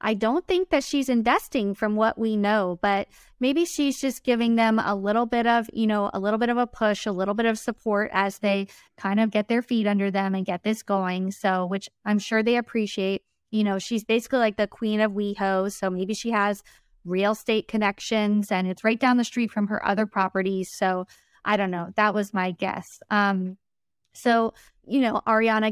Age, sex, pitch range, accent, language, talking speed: 20-39, female, 200-245 Hz, American, English, 210 wpm